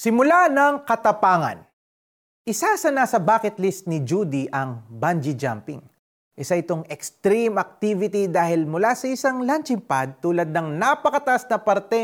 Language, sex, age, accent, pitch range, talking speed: Filipino, male, 30-49, native, 150-220 Hz, 140 wpm